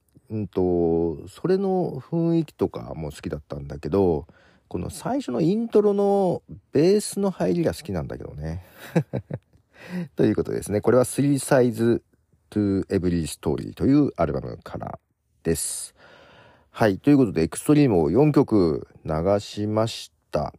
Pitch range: 85-145 Hz